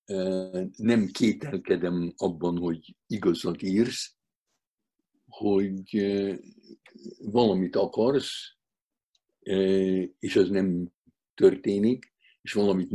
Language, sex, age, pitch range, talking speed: Hungarian, male, 60-79, 90-115 Hz, 70 wpm